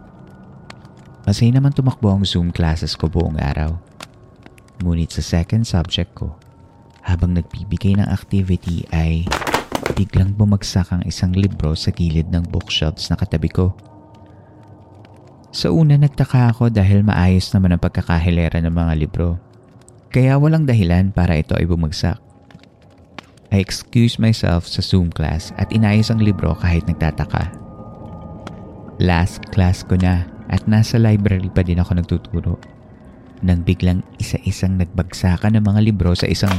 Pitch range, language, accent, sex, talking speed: 85-110 Hz, Filipino, native, male, 135 wpm